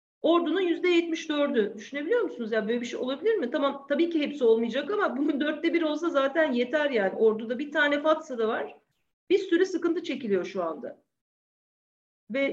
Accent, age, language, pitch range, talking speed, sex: native, 40-59, Turkish, 255-330 Hz, 180 wpm, female